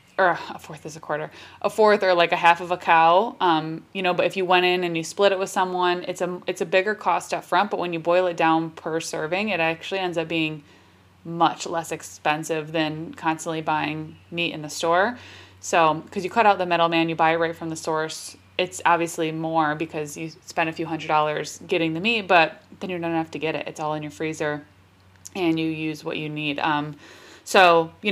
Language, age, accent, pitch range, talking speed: English, 20-39, American, 160-180 Hz, 235 wpm